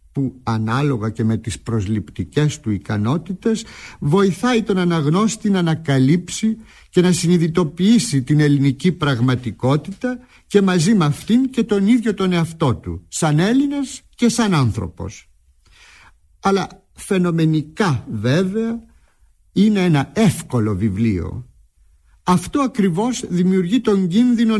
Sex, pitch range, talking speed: male, 115-185 Hz, 110 wpm